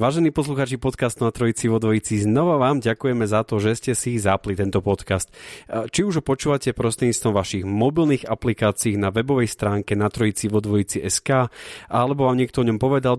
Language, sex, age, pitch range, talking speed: Slovak, male, 30-49, 105-125 Hz, 170 wpm